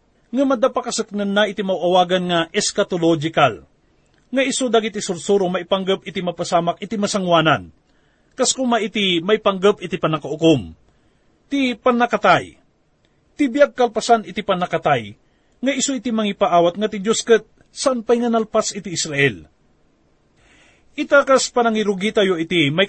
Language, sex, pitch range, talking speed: English, male, 175-235 Hz, 125 wpm